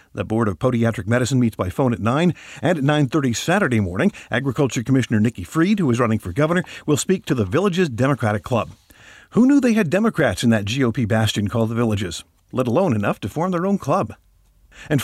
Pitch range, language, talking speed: 110-165 Hz, English, 210 wpm